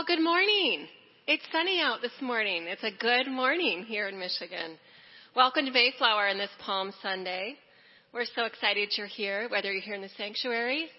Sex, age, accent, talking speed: female, 30-49, American, 175 wpm